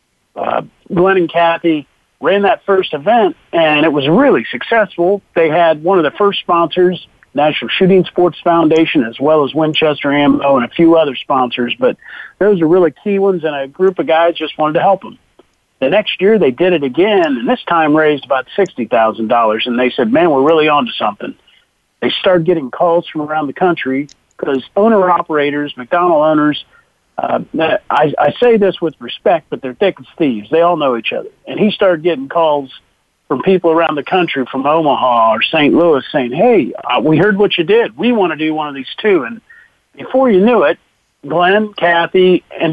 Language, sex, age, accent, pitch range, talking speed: English, male, 50-69, American, 145-195 Hz, 200 wpm